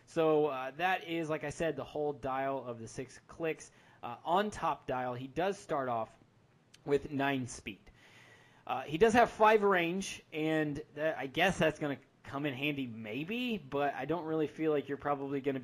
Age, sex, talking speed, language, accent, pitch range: 20-39, male, 200 wpm, English, American, 130-160 Hz